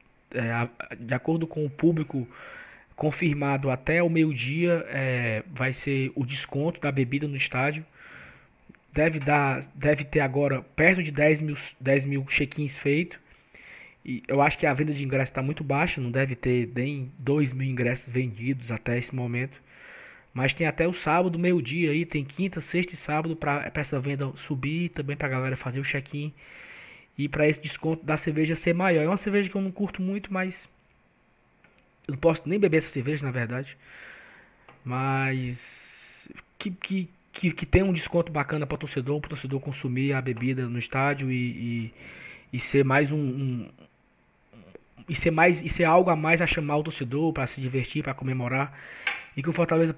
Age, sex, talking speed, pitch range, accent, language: 20-39, male, 180 wpm, 135-165 Hz, Brazilian, Portuguese